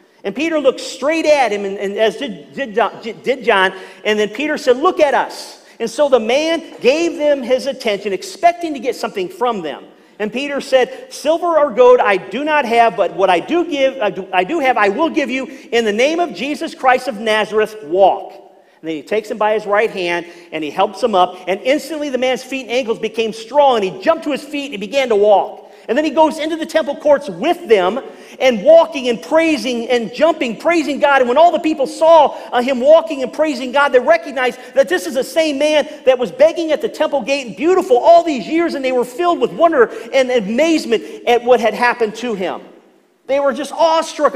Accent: American